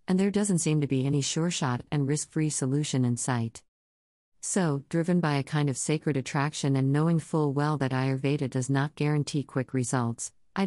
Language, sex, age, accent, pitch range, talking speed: English, female, 50-69, American, 130-160 Hz, 190 wpm